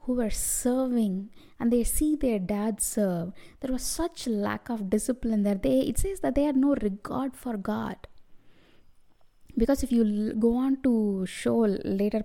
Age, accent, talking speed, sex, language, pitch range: 20-39, Indian, 165 wpm, female, English, 200-250 Hz